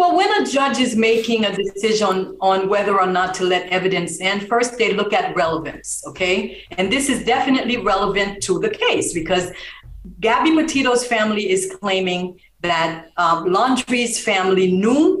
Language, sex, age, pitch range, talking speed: English, female, 50-69, 185-260 Hz, 160 wpm